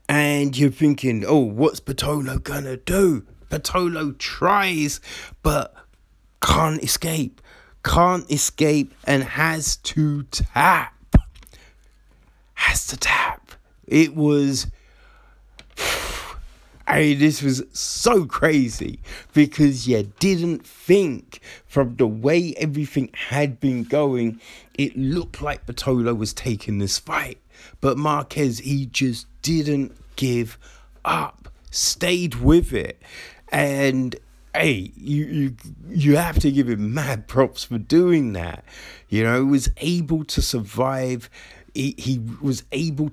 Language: English